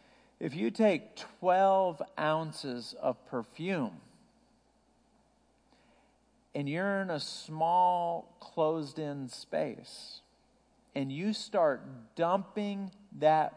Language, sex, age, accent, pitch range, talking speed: English, male, 50-69, American, 155-220 Hz, 85 wpm